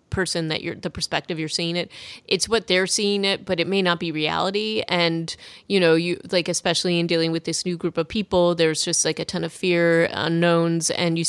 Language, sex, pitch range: English, female, 165-190 Hz